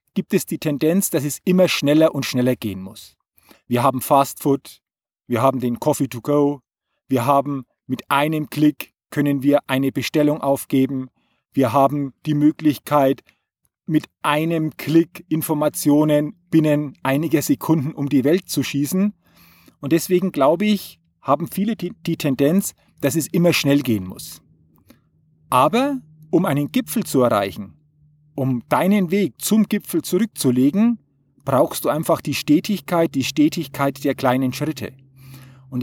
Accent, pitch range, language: German, 130-165 Hz, German